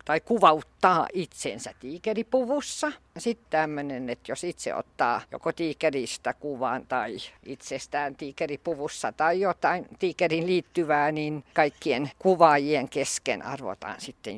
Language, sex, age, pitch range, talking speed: Finnish, female, 50-69, 145-195 Hz, 110 wpm